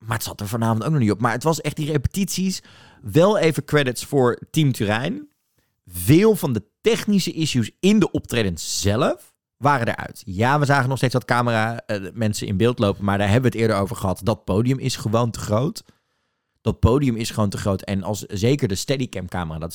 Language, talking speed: Dutch, 215 wpm